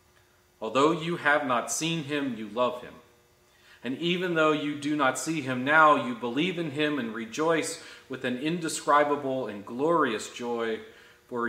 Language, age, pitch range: English, 40-59, 120-150 Hz